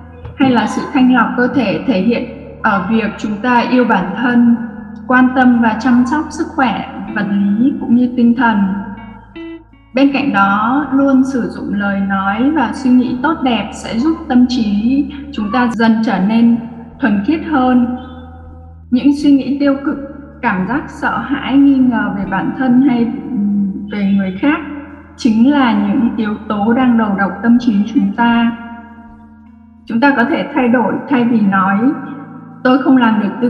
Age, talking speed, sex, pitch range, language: 20-39, 175 wpm, female, 215-265 Hz, Vietnamese